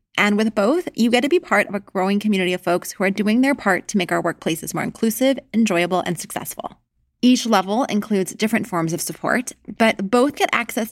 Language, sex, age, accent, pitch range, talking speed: English, female, 20-39, American, 185-240 Hz, 215 wpm